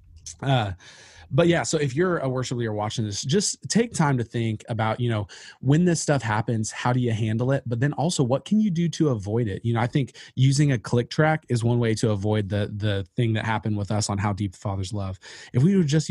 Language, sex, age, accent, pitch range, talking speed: English, male, 20-39, American, 105-130 Hz, 255 wpm